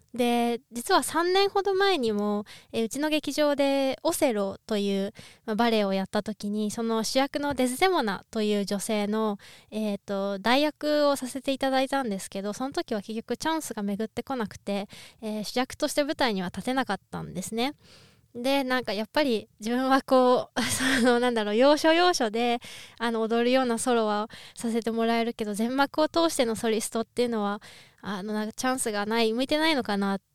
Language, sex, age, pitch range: Japanese, female, 20-39, 210-270 Hz